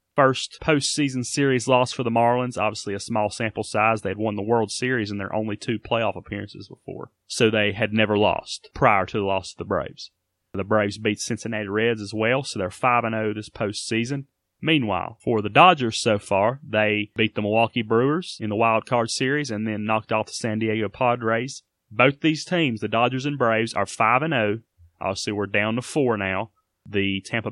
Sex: male